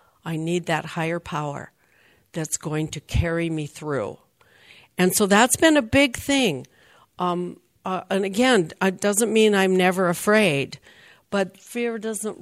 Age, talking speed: 60-79, 150 wpm